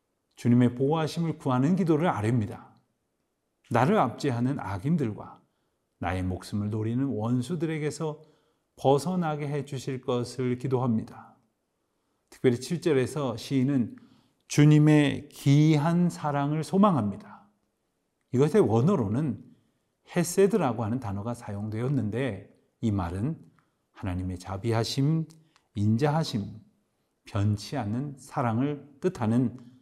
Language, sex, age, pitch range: Korean, male, 40-59, 115-155 Hz